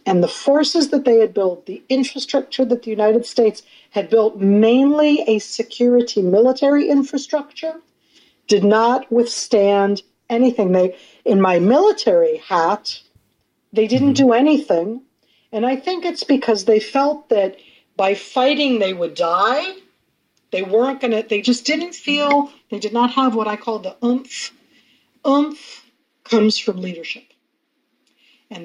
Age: 50-69